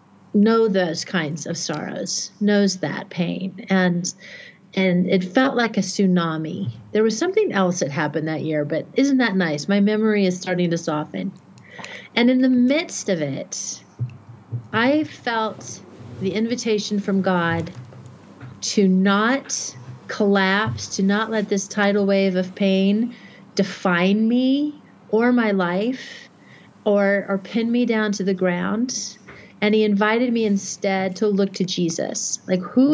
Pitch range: 185-225 Hz